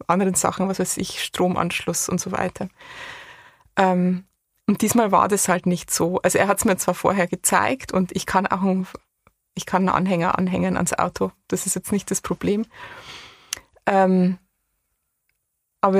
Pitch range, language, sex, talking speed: 190-240 Hz, German, female, 170 wpm